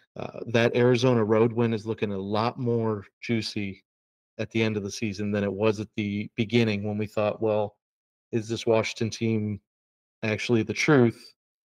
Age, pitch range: 40-59, 110-125 Hz